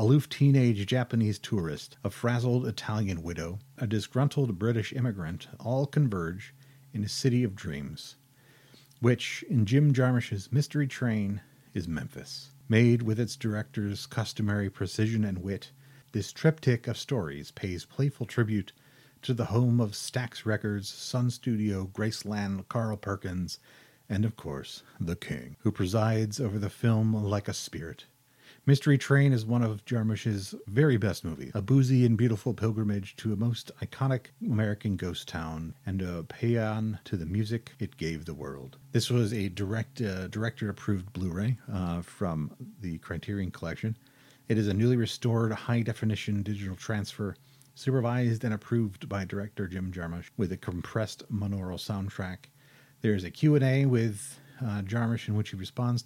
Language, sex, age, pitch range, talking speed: English, male, 40-59, 100-125 Hz, 150 wpm